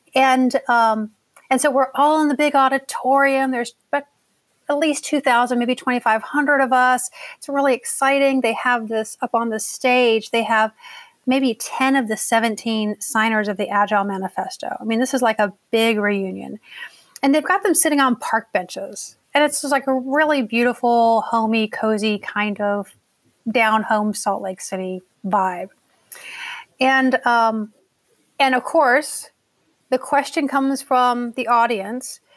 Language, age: English, 30-49